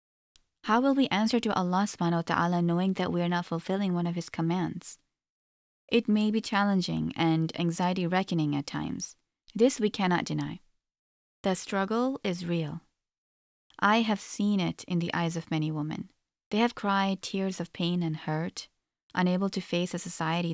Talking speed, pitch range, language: 170 wpm, 165-215 Hz, English